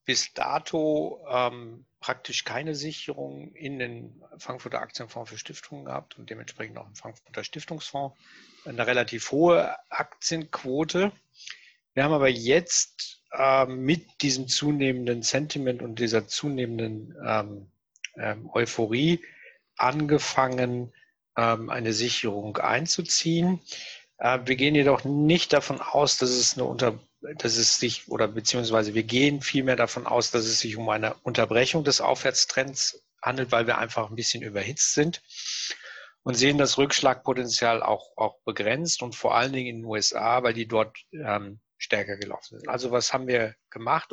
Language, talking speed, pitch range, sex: German, 145 wpm, 115-145 Hz, male